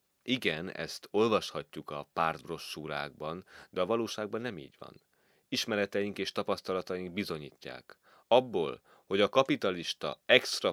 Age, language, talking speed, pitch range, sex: 30-49, Hungarian, 110 wpm, 80-105 Hz, male